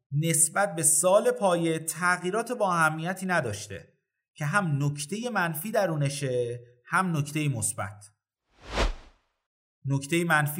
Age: 30-49